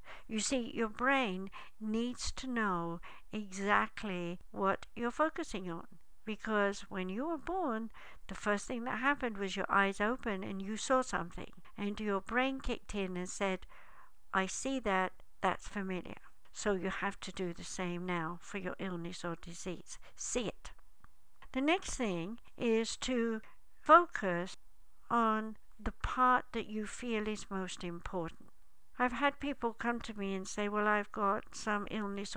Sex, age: female, 60-79